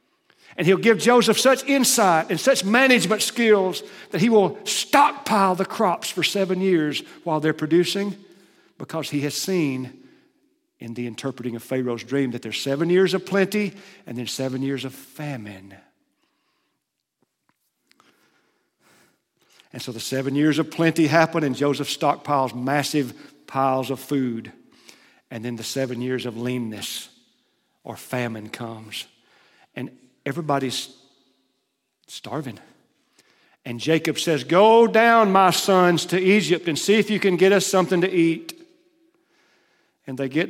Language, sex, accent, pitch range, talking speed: English, male, American, 135-190 Hz, 140 wpm